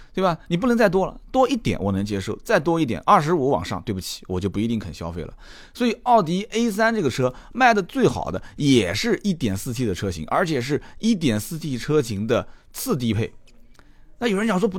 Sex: male